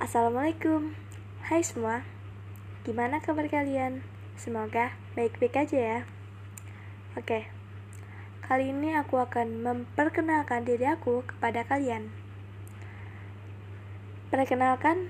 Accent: native